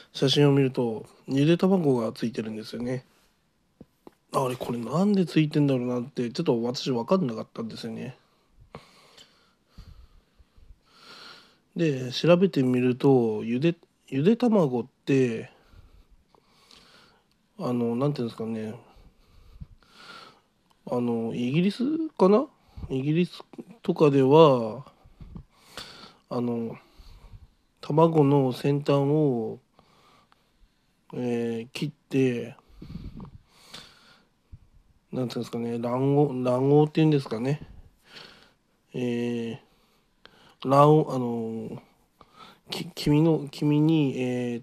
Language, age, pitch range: Japanese, 20-39, 120-150 Hz